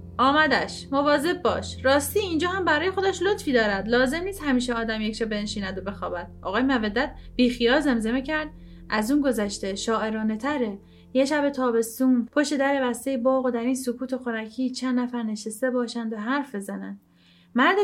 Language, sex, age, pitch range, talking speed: Persian, female, 30-49, 220-285 Hz, 160 wpm